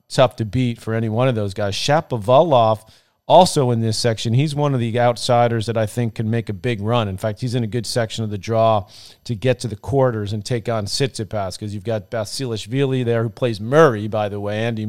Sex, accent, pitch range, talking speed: male, American, 110-125 Hz, 235 wpm